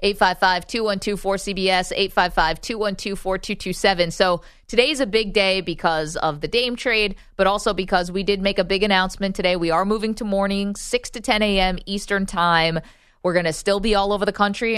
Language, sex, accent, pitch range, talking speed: English, female, American, 175-215 Hz, 180 wpm